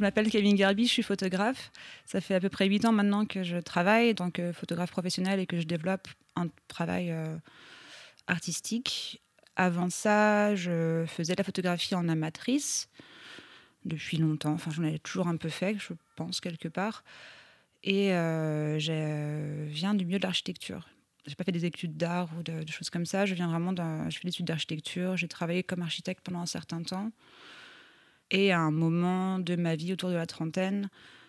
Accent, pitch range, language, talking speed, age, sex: French, 170-200 Hz, French, 190 wpm, 20-39, female